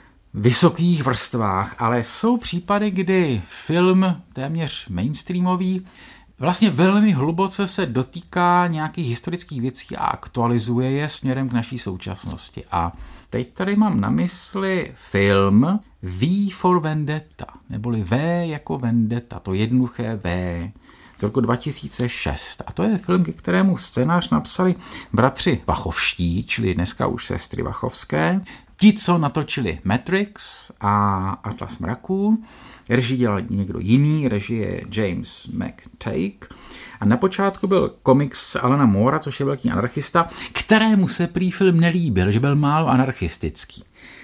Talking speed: 125 wpm